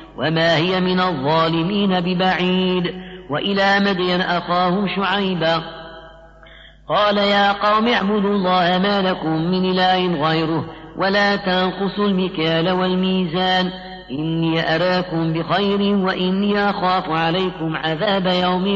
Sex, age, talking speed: female, 40-59, 100 wpm